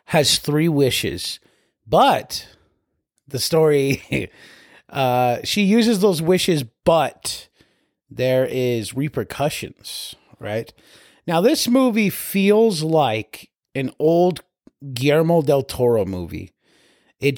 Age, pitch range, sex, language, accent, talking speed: 30-49, 115-145 Hz, male, English, American, 95 wpm